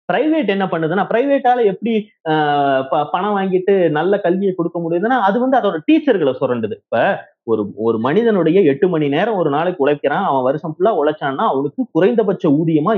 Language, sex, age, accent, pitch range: Tamil, male, 30-49, native, 165-230 Hz